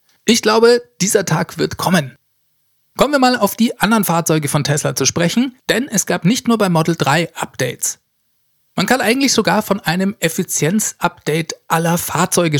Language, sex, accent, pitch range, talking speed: German, male, German, 140-195 Hz, 165 wpm